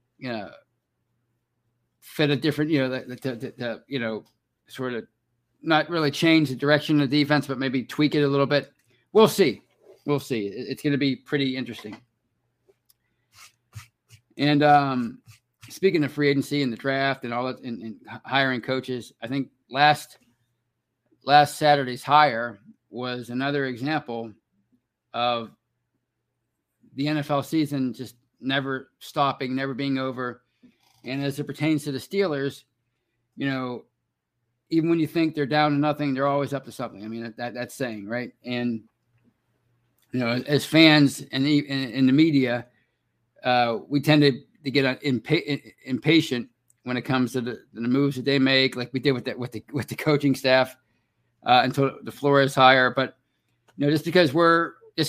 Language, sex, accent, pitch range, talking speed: English, male, American, 120-145 Hz, 170 wpm